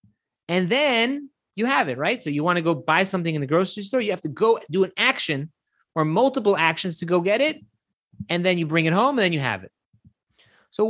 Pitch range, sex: 165-230 Hz, male